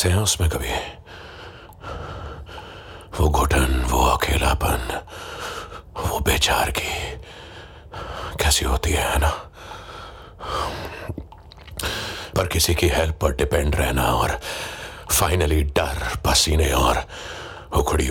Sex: male